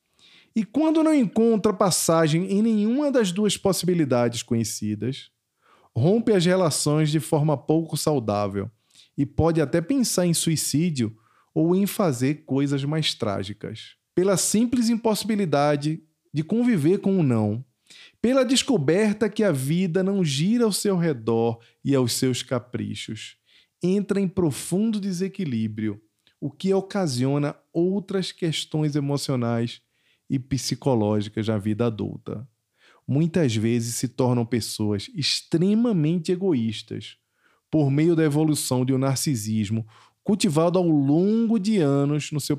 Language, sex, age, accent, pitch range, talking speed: Portuguese, male, 20-39, Brazilian, 125-185 Hz, 125 wpm